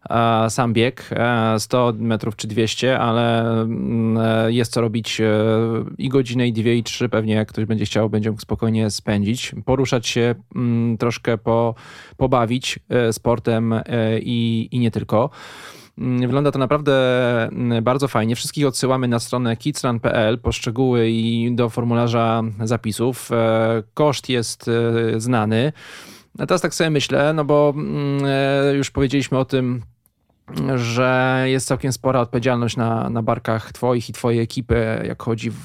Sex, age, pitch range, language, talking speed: male, 20-39, 110-130 Hz, Polish, 130 wpm